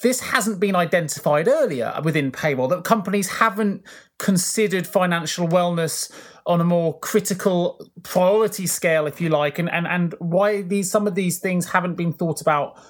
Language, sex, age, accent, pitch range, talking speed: English, male, 30-49, British, 155-195 Hz, 165 wpm